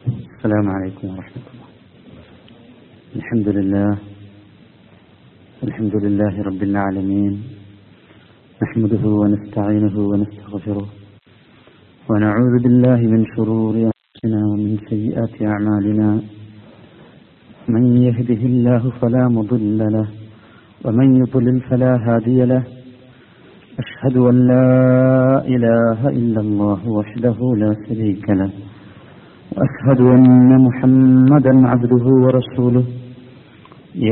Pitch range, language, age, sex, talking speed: 105-130 Hz, Malayalam, 50-69, male, 85 wpm